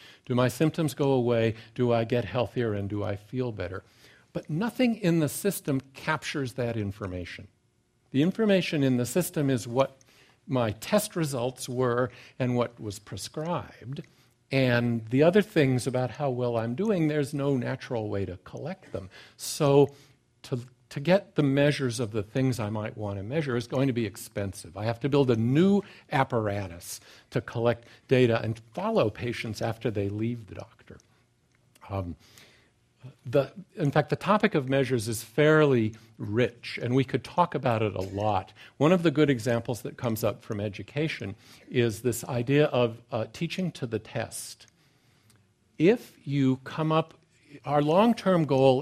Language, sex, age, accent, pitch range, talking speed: English, male, 50-69, American, 115-150 Hz, 165 wpm